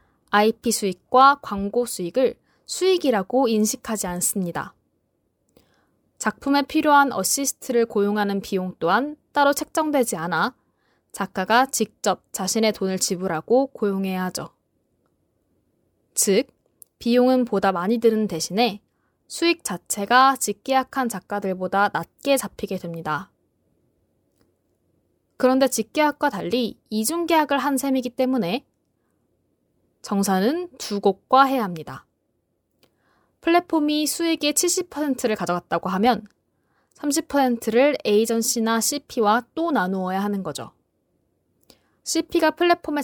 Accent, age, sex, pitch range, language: native, 20-39, female, 195-275 Hz, Korean